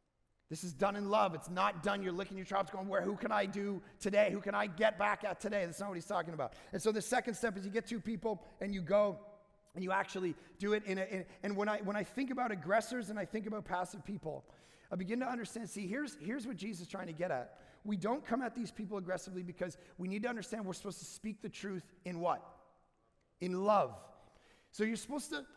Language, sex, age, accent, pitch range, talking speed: English, male, 30-49, American, 190-245 Hz, 250 wpm